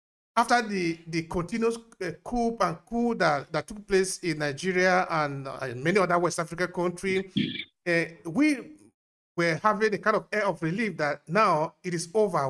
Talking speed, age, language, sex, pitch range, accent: 170 wpm, 50-69, English, male, 165-210 Hz, Nigerian